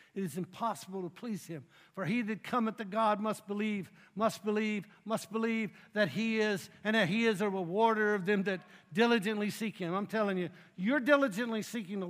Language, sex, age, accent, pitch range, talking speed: English, male, 60-79, American, 195-235 Hz, 200 wpm